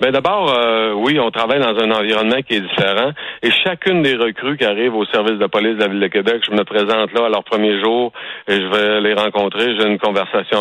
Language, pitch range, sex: French, 105-120 Hz, male